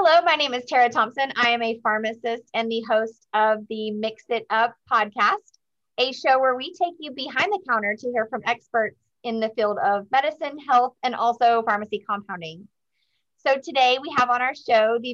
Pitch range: 220-260 Hz